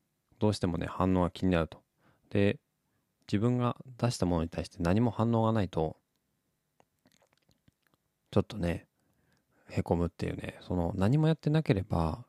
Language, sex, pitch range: Japanese, male, 85-115 Hz